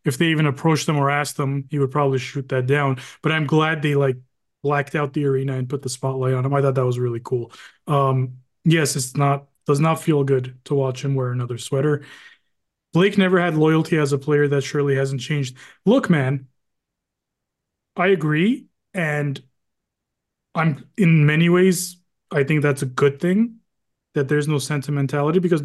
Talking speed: 185 wpm